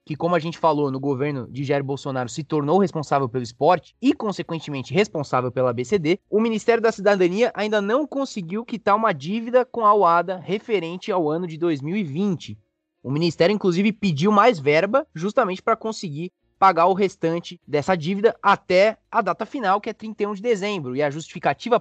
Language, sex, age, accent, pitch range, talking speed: Portuguese, male, 20-39, Brazilian, 150-210 Hz, 175 wpm